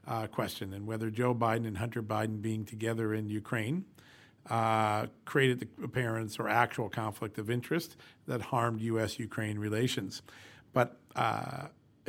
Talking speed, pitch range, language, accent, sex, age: 140 wpm, 110-130 Hz, English, American, male, 50-69